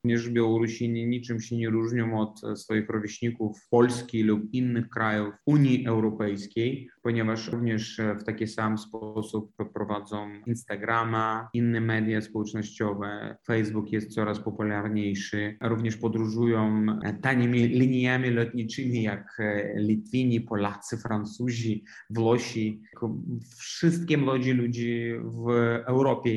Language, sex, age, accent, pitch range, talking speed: Polish, male, 30-49, native, 110-120 Hz, 100 wpm